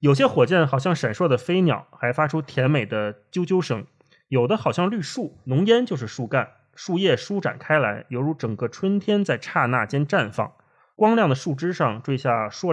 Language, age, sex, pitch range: Chinese, 20-39, male, 130-180 Hz